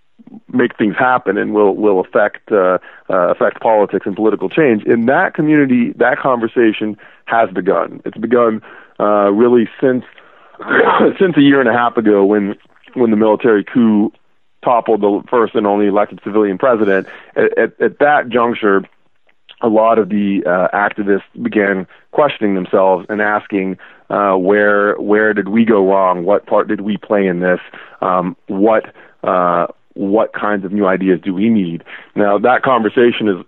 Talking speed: 165 wpm